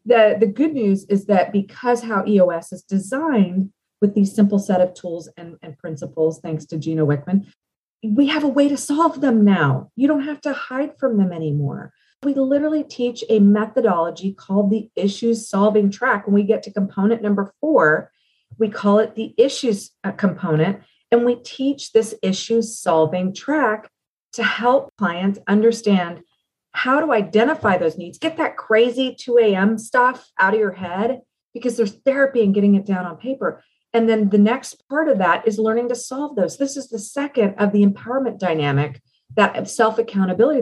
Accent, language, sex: American, English, female